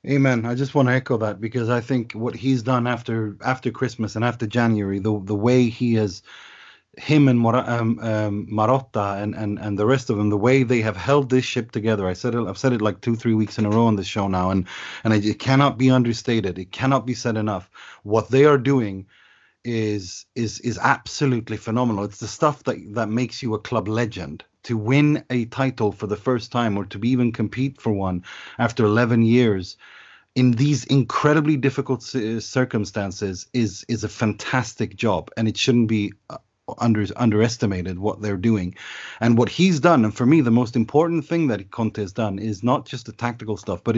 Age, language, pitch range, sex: 30-49, English, 105-130 Hz, male